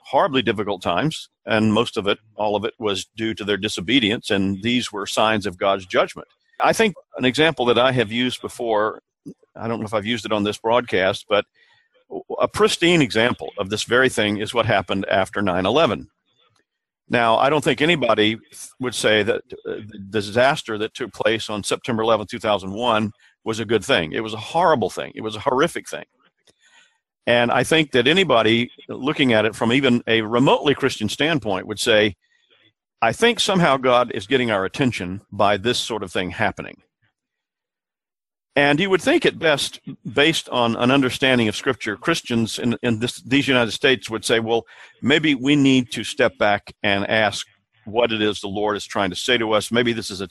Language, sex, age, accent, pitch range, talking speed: English, male, 50-69, American, 105-130 Hz, 190 wpm